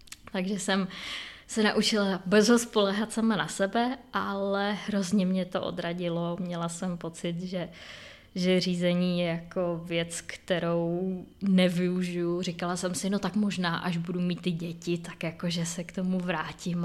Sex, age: female, 20-39